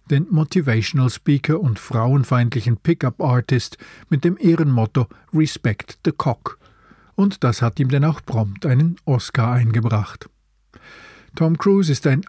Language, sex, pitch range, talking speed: German, male, 120-155 Hz, 125 wpm